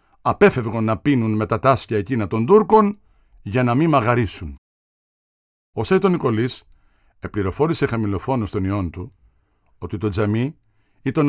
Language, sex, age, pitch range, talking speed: Greek, male, 50-69, 105-140 Hz, 135 wpm